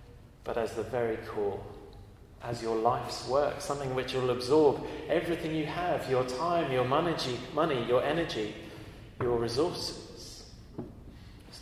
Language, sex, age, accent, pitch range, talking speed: English, male, 30-49, British, 105-145 Hz, 130 wpm